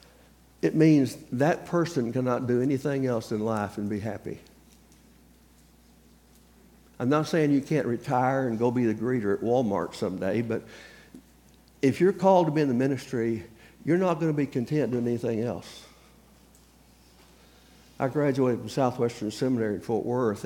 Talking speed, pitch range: 155 wpm, 105-140 Hz